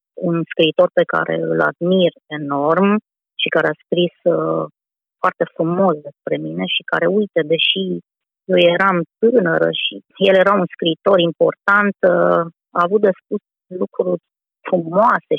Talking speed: 140 wpm